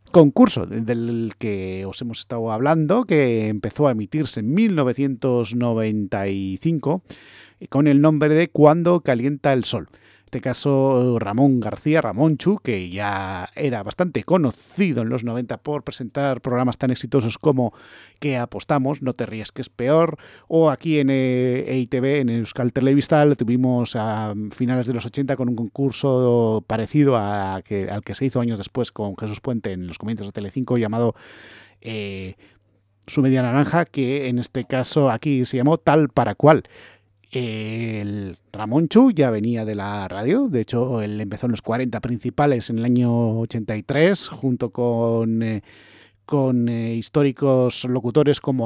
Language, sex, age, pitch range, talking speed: English, male, 30-49, 110-140 Hz, 155 wpm